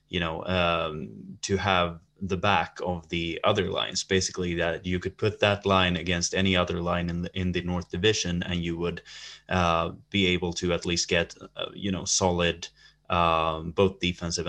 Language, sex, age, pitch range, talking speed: English, male, 20-39, 90-100 Hz, 180 wpm